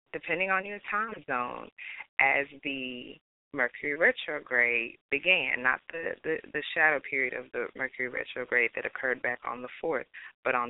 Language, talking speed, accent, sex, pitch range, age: English, 150 wpm, American, female, 130-180 Hz, 30-49